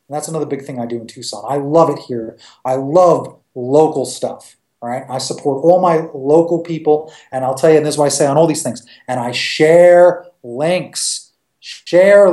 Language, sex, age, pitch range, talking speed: English, male, 30-49, 160-245 Hz, 205 wpm